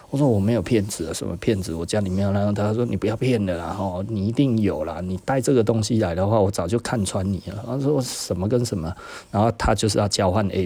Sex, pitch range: male, 100-145 Hz